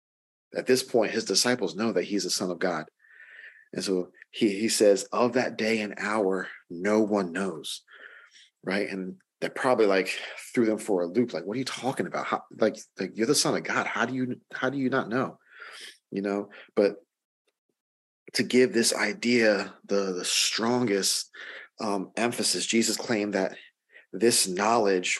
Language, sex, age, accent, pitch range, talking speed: English, male, 30-49, American, 100-120 Hz, 175 wpm